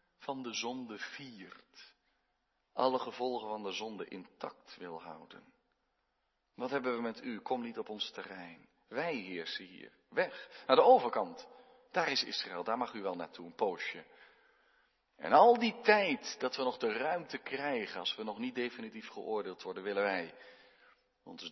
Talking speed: 165 wpm